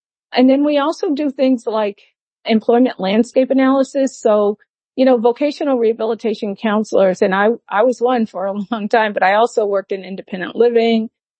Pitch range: 195-235 Hz